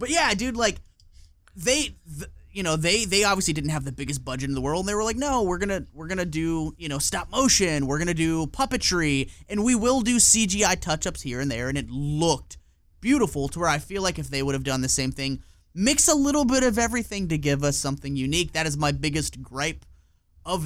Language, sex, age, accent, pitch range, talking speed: English, male, 20-39, American, 135-195 Hz, 240 wpm